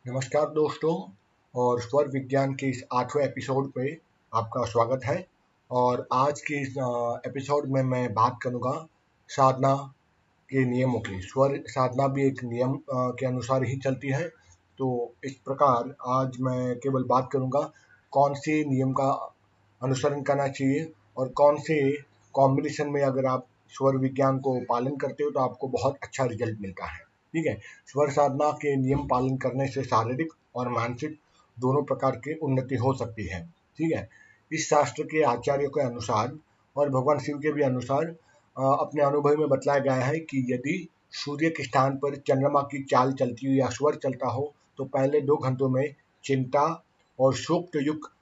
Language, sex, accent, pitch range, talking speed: Hindi, male, native, 125-145 Hz, 165 wpm